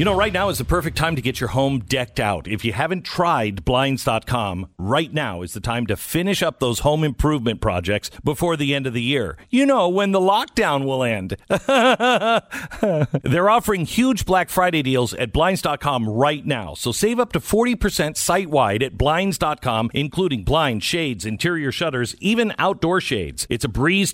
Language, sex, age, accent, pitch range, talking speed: English, male, 50-69, American, 120-175 Hz, 185 wpm